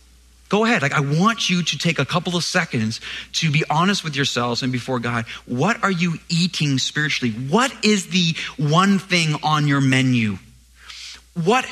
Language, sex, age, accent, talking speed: English, male, 30-49, American, 175 wpm